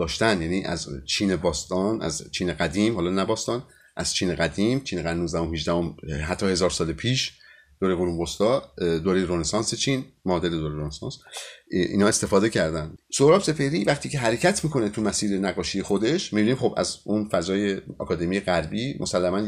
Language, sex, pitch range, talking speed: Persian, male, 90-145 Hz, 155 wpm